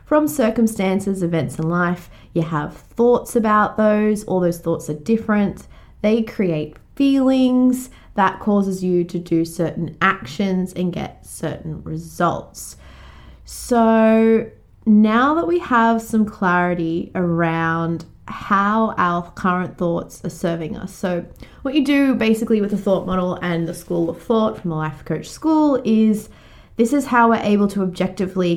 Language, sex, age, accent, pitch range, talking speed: English, female, 20-39, Australian, 175-225 Hz, 150 wpm